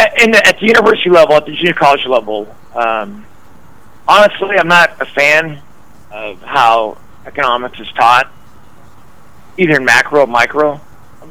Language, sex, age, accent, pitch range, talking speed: English, male, 50-69, American, 115-150 Hz, 150 wpm